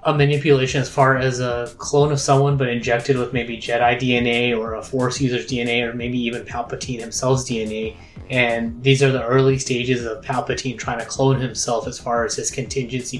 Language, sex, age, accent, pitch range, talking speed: English, male, 20-39, American, 120-135 Hz, 195 wpm